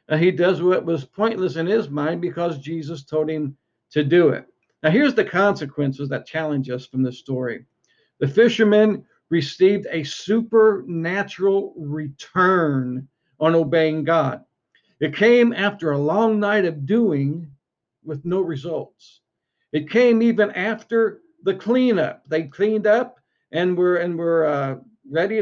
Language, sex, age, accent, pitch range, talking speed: English, male, 50-69, American, 140-190 Hz, 145 wpm